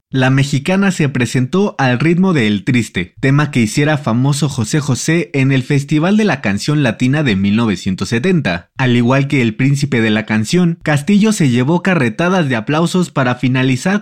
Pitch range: 120-170 Hz